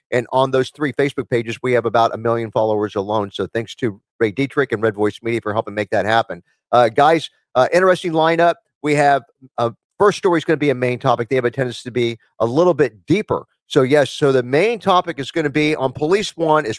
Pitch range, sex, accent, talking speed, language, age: 110-140 Hz, male, American, 245 wpm, English, 40-59